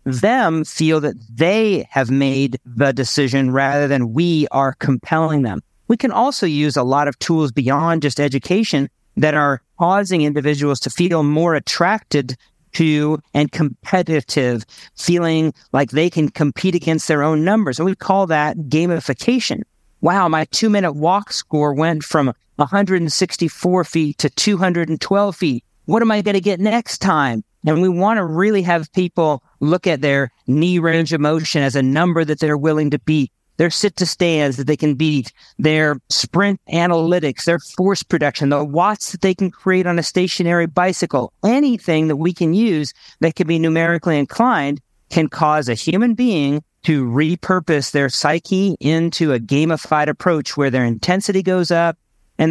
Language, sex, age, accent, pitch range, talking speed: English, male, 50-69, American, 145-180 Hz, 165 wpm